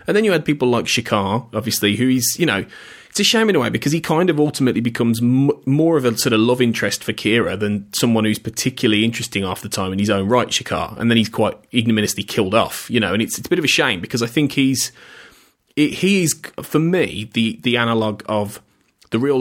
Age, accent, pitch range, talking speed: 30-49, British, 105-135 Hz, 240 wpm